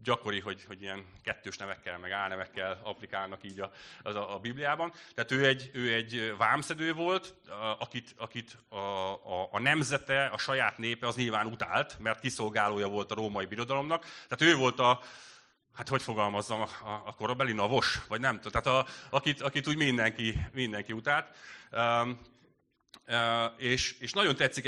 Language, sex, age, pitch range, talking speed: Hungarian, male, 30-49, 105-125 Hz, 165 wpm